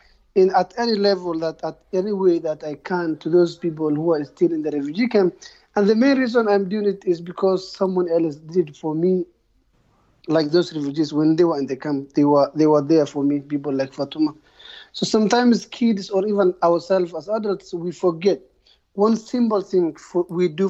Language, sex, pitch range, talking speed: English, male, 170-200 Hz, 205 wpm